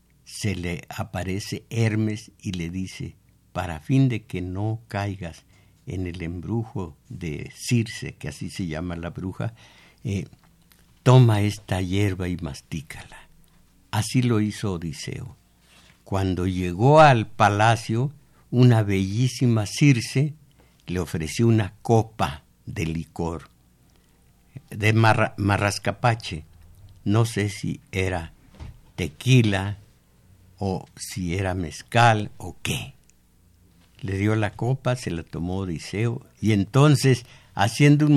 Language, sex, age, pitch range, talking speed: Spanish, male, 60-79, 90-125 Hz, 115 wpm